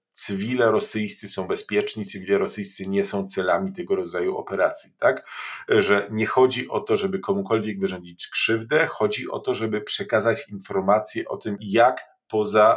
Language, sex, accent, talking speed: Polish, male, native, 150 wpm